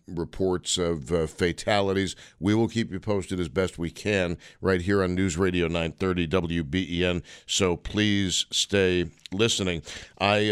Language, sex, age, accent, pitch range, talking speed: English, male, 50-69, American, 100-130 Hz, 145 wpm